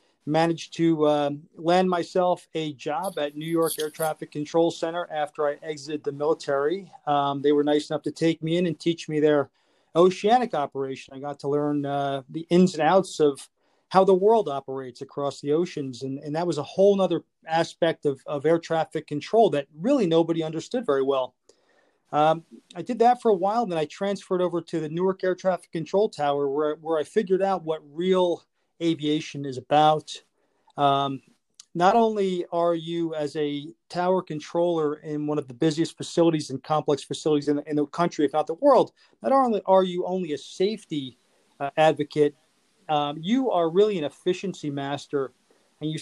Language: English